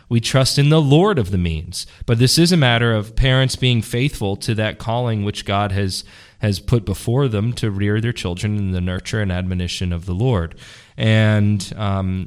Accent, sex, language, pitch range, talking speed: American, male, English, 100-125 Hz, 200 wpm